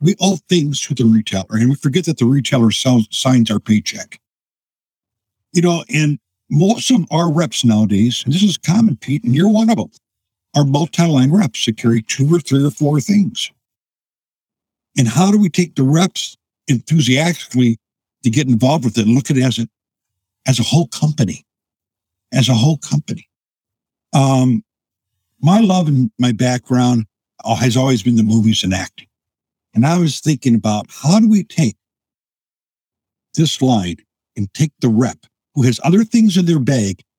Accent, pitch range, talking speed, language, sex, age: American, 110-170 Hz, 175 wpm, English, male, 60-79